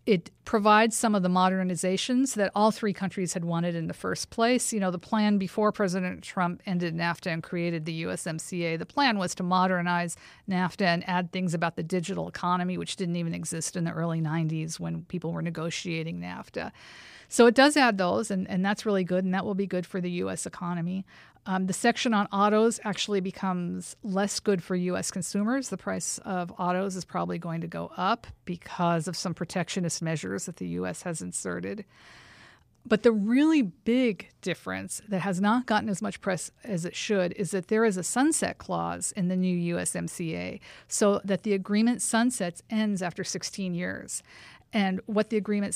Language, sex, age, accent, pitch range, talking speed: English, female, 50-69, American, 175-210 Hz, 190 wpm